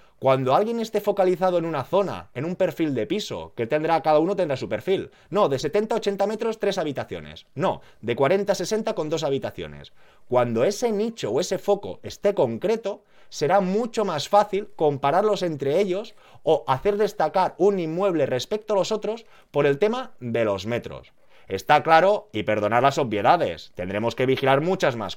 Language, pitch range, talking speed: Spanish, 120-200 Hz, 180 wpm